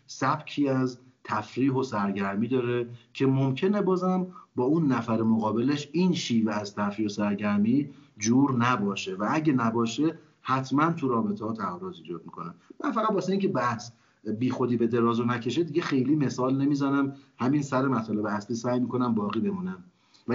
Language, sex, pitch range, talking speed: Persian, male, 110-140 Hz, 160 wpm